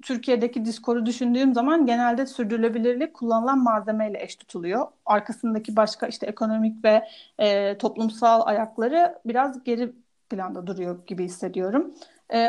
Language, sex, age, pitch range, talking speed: Turkish, female, 40-59, 215-270 Hz, 120 wpm